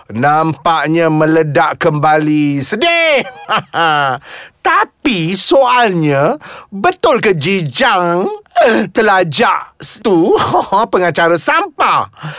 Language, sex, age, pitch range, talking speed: Malay, male, 30-49, 175-280 Hz, 65 wpm